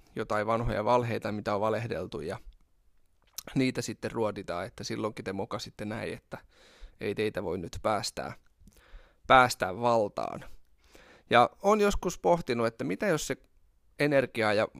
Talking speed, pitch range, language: 135 wpm, 105-120 Hz, Finnish